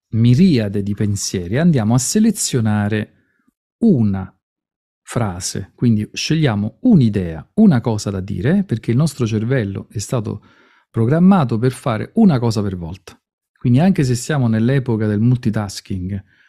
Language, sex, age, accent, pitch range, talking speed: Italian, male, 40-59, native, 105-145 Hz, 125 wpm